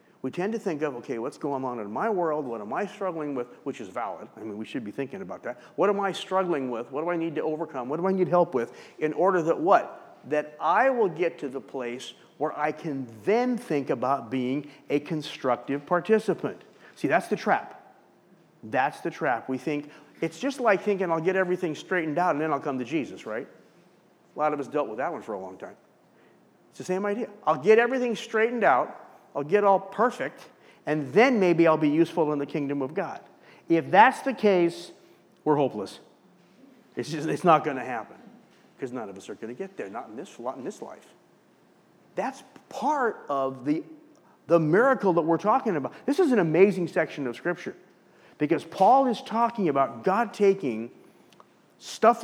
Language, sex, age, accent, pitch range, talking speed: English, male, 50-69, American, 145-205 Hz, 205 wpm